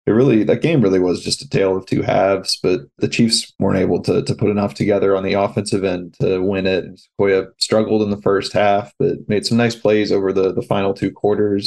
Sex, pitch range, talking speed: male, 95-105 Hz, 240 wpm